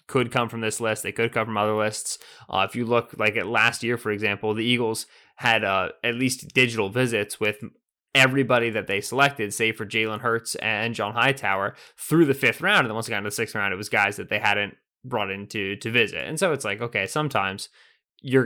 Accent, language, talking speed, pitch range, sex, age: American, English, 230 wpm, 110-135 Hz, male, 20-39